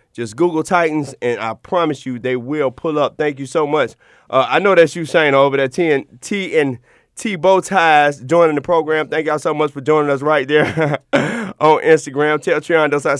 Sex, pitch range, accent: male, 145-205 Hz, American